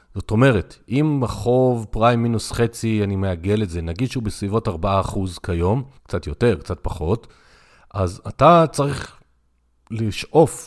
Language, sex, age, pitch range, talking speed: Hebrew, male, 40-59, 100-130 Hz, 135 wpm